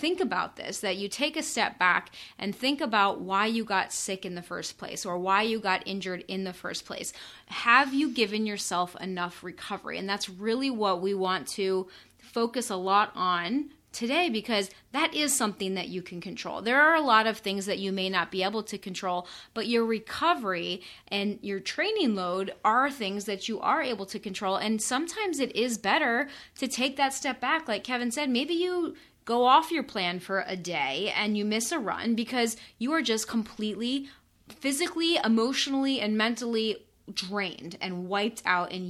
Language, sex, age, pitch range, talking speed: English, female, 30-49, 195-250 Hz, 195 wpm